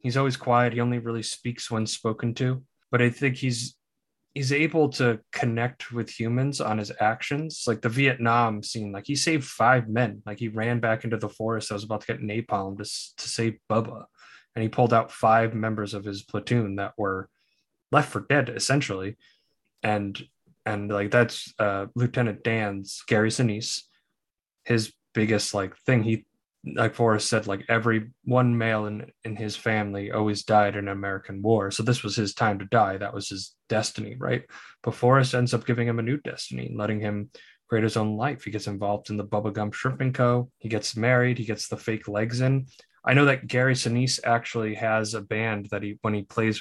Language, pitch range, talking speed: English, 105-120 Hz, 200 wpm